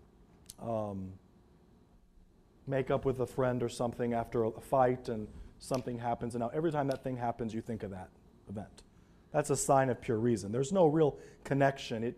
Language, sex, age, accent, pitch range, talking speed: English, male, 40-59, American, 115-150 Hz, 180 wpm